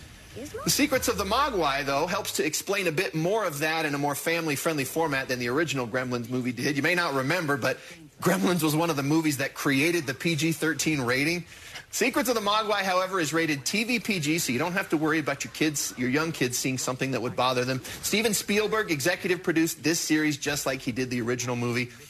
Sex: male